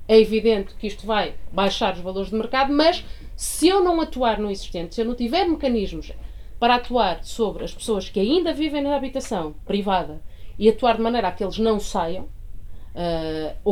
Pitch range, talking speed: 185-250 Hz, 190 wpm